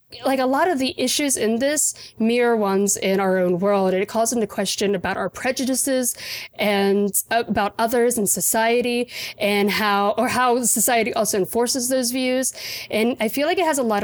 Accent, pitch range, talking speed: American, 195-240 Hz, 190 wpm